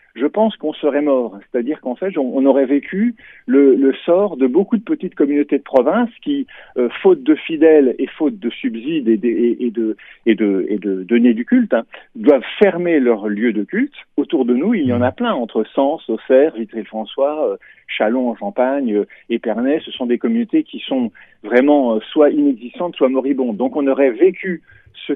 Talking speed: 195 wpm